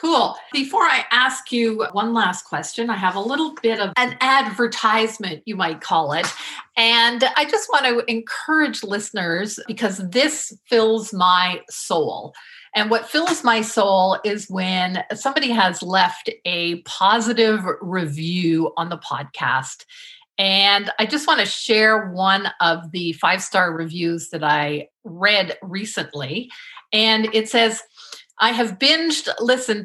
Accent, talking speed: American, 140 wpm